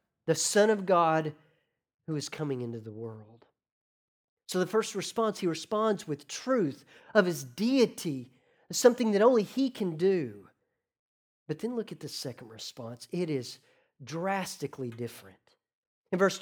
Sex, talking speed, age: male, 145 wpm, 40-59